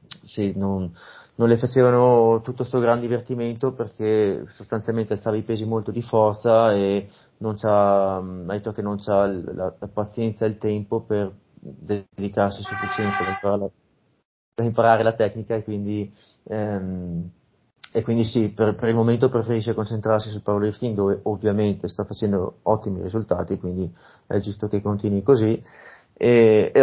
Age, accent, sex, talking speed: 30-49, native, male, 150 wpm